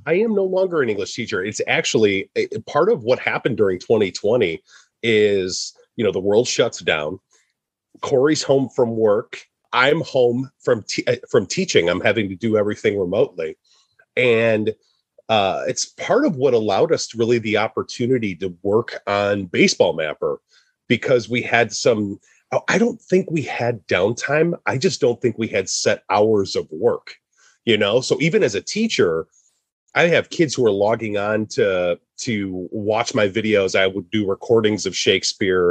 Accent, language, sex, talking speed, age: American, English, male, 170 wpm, 30-49